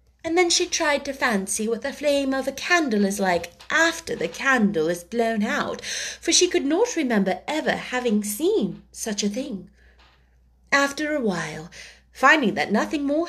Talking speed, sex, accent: 170 wpm, female, British